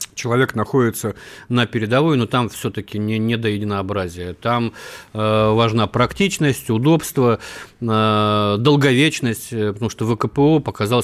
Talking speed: 120 wpm